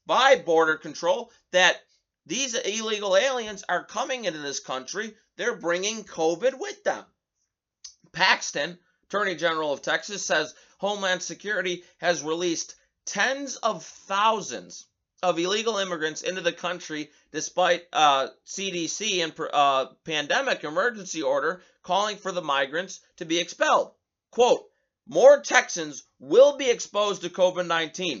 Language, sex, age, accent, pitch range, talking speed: English, male, 30-49, American, 160-220 Hz, 125 wpm